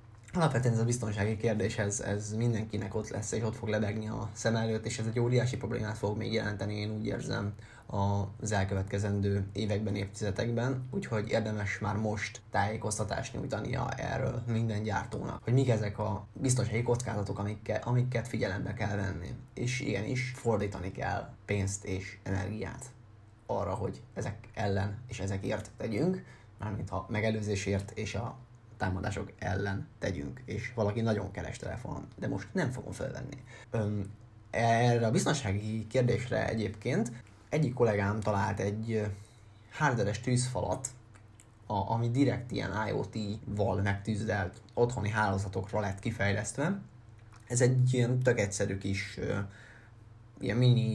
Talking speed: 130 wpm